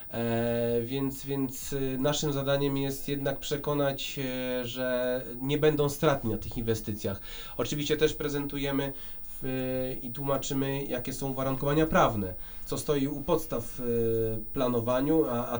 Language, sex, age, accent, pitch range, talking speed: Polish, male, 30-49, native, 115-140 Hz, 125 wpm